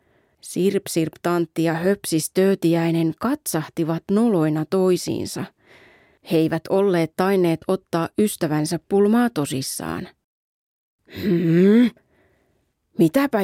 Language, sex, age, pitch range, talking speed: Finnish, female, 30-49, 155-205 Hz, 75 wpm